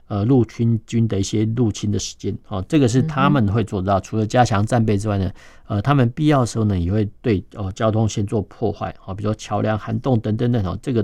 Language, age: Chinese, 50-69